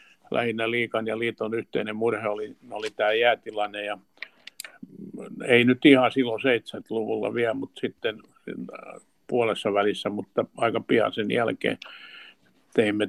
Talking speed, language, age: 120 wpm, Finnish, 60-79